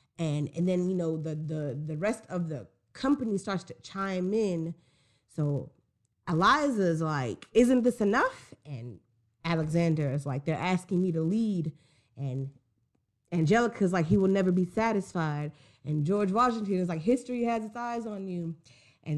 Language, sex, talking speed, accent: English, female, 160 wpm, American